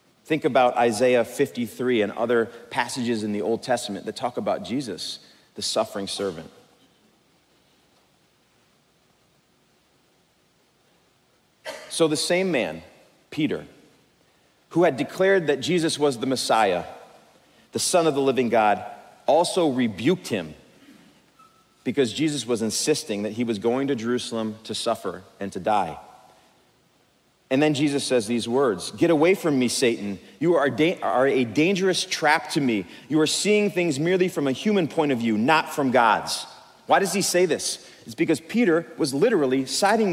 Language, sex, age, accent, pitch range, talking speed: English, male, 40-59, American, 125-180 Hz, 150 wpm